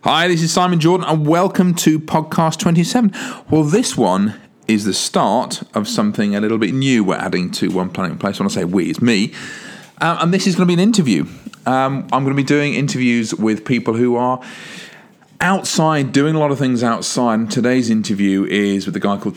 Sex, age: male, 40-59